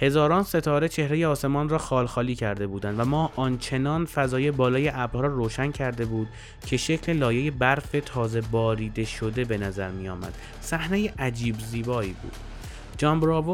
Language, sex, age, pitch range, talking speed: Persian, male, 20-39, 120-150 Hz, 150 wpm